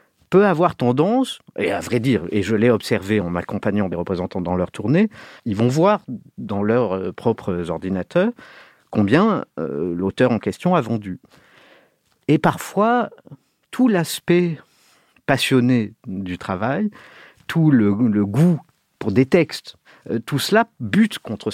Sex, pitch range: male, 100-155 Hz